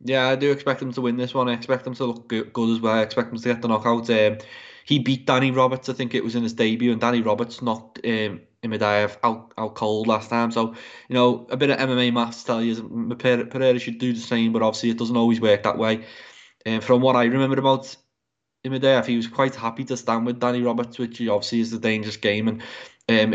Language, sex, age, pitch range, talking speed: English, male, 20-39, 115-125 Hz, 250 wpm